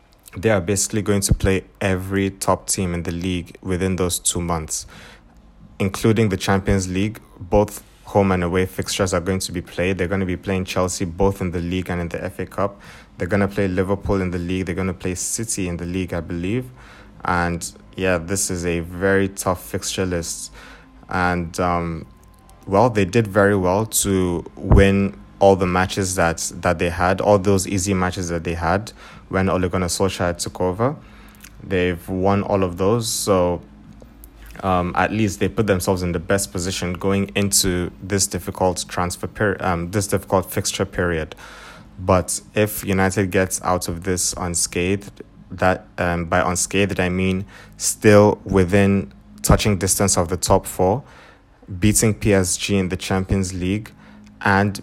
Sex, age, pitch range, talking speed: male, 20-39, 90-100 Hz, 170 wpm